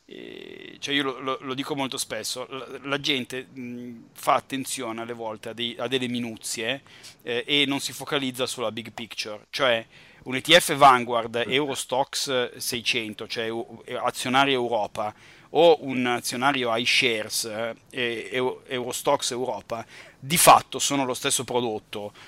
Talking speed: 135 wpm